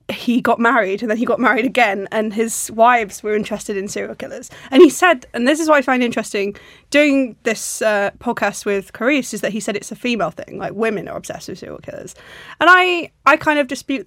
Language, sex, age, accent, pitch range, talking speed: English, female, 20-39, British, 200-235 Hz, 230 wpm